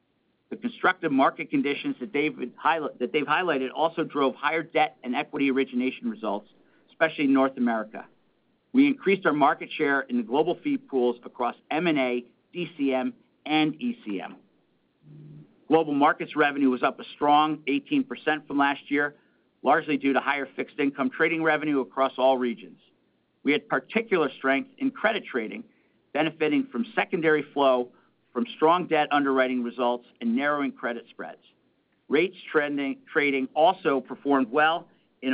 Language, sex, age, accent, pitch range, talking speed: English, male, 50-69, American, 130-160 Hz, 140 wpm